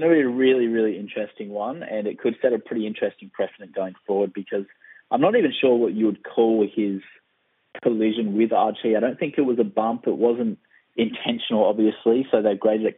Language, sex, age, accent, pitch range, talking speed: English, male, 20-39, Australian, 100-115 Hz, 215 wpm